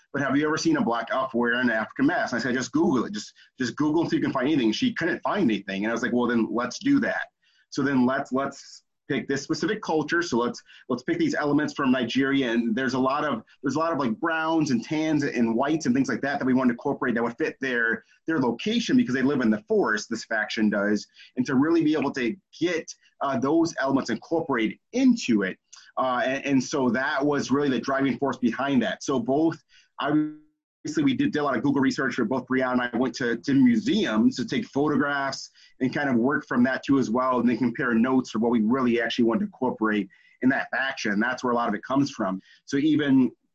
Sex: male